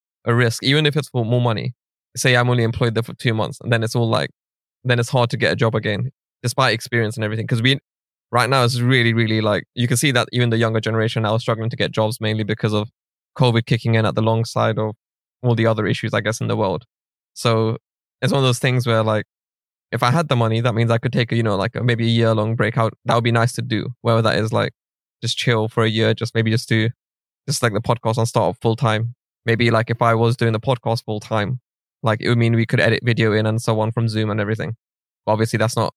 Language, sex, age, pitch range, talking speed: English, male, 20-39, 110-125 Hz, 265 wpm